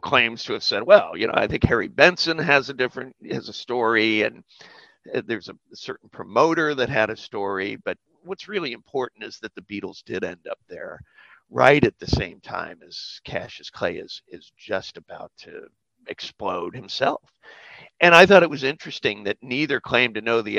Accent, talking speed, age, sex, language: American, 190 wpm, 50-69, male, English